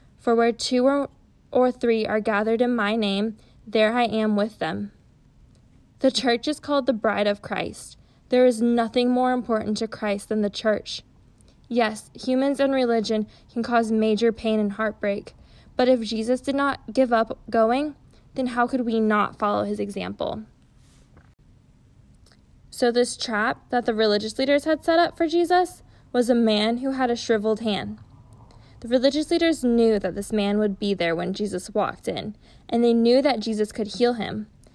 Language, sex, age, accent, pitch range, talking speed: English, female, 10-29, American, 210-255 Hz, 175 wpm